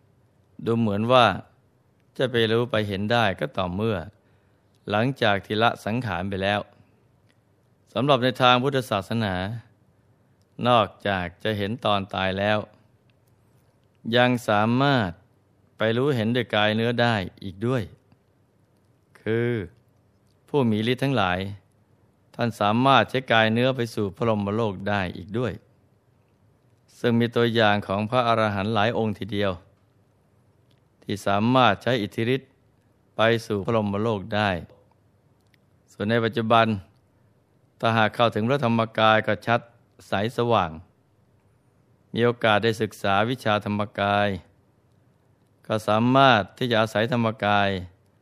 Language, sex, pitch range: Thai, male, 100-120 Hz